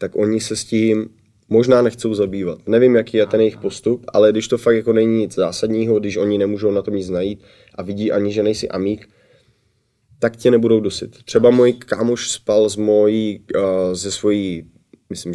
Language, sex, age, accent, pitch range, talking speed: Czech, male, 20-39, native, 90-110 Hz, 190 wpm